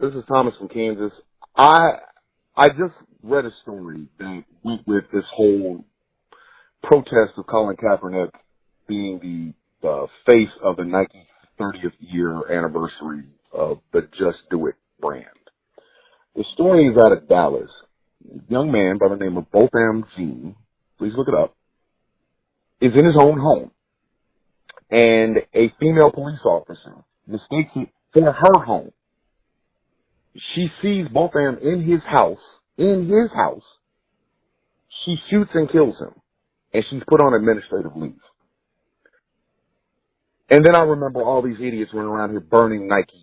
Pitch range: 105-160 Hz